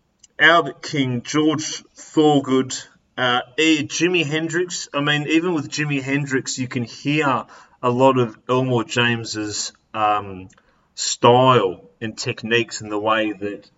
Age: 30-49